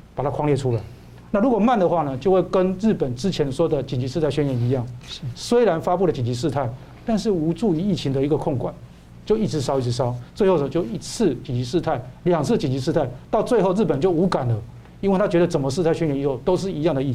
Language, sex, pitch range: Chinese, male, 130-180 Hz